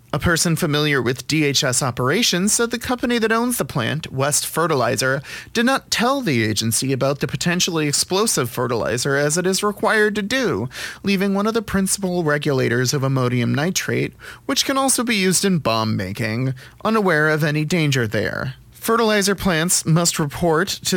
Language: English